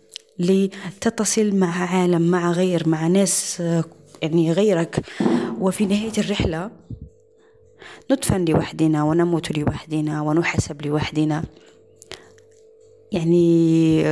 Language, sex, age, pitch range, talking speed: Arabic, female, 20-39, 170-215 Hz, 80 wpm